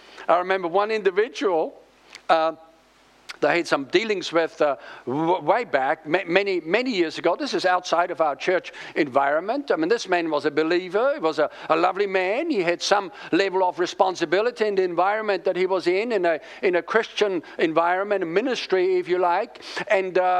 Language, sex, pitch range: English, male, 175-245 Hz